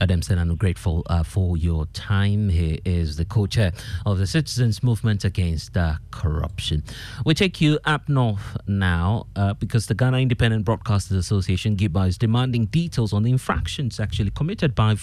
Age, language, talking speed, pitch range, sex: 30-49, English, 165 wpm, 95-125 Hz, male